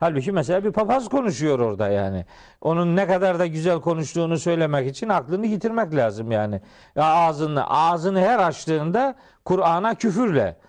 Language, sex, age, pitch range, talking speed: Turkish, male, 50-69, 165-230 Hz, 145 wpm